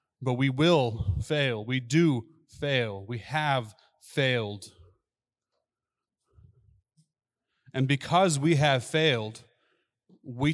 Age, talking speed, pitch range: 30-49, 90 wpm, 120-140 Hz